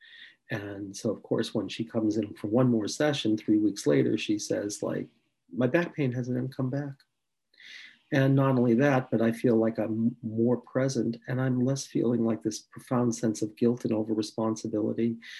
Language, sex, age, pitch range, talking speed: English, male, 40-59, 110-125 Hz, 185 wpm